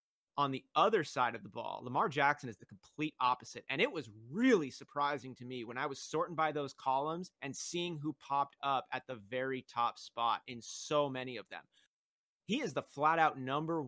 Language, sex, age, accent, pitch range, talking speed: English, male, 30-49, American, 130-155 Hz, 210 wpm